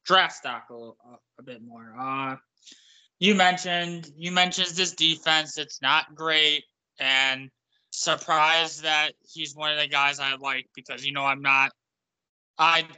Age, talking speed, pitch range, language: 20-39, 155 wpm, 140-175 Hz, English